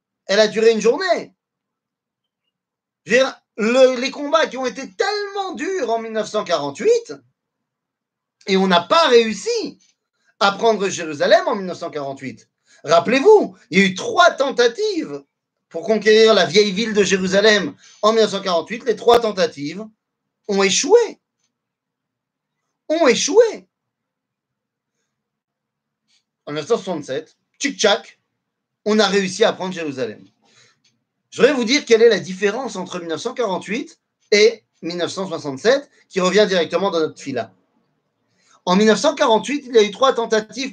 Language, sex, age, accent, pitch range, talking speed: French, male, 40-59, French, 185-260 Hz, 120 wpm